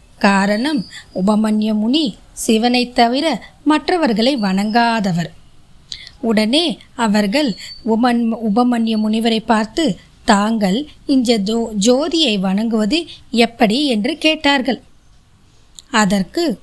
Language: Tamil